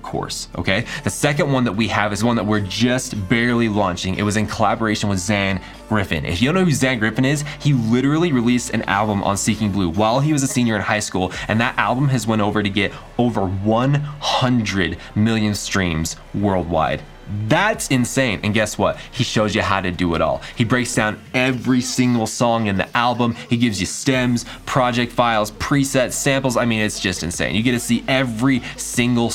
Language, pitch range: English, 100-125 Hz